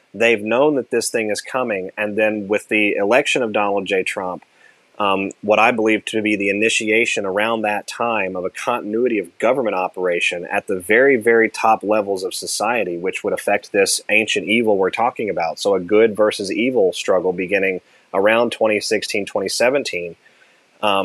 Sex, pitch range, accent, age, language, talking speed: male, 105-120 Hz, American, 30-49, English, 170 wpm